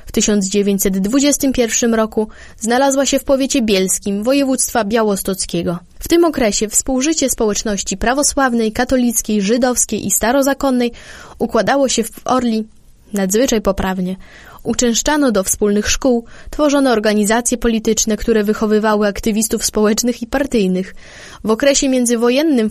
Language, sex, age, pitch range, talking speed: Polish, female, 20-39, 215-265 Hz, 110 wpm